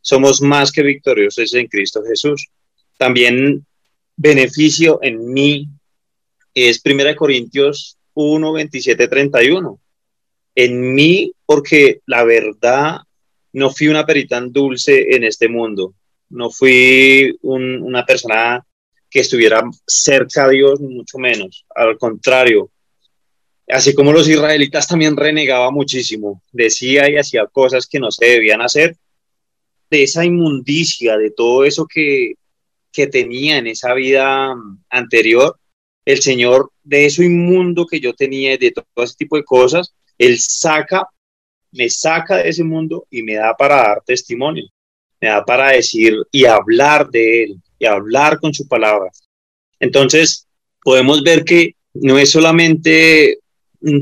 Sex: male